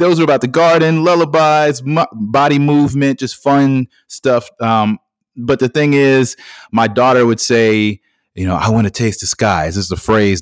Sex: male